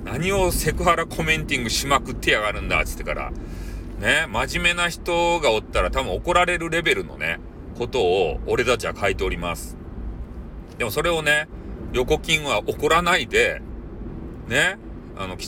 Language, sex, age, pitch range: Japanese, male, 40-59, 85-130 Hz